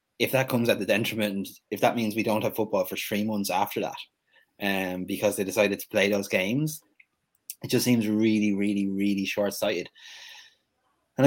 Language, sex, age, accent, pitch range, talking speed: English, male, 20-39, Irish, 95-120 Hz, 180 wpm